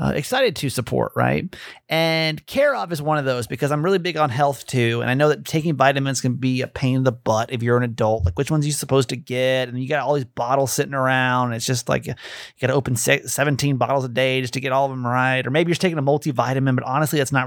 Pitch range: 130-165 Hz